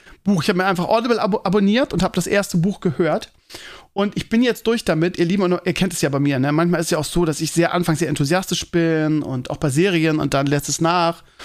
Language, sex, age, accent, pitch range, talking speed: German, male, 40-59, German, 160-205 Hz, 275 wpm